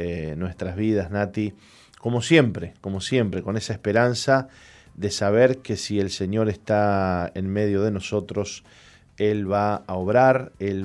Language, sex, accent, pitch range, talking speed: Spanish, male, Argentinian, 105-130 Hz, 150 wpm